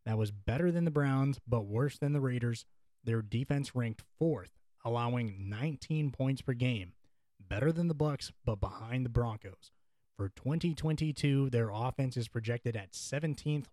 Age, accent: 20-39, American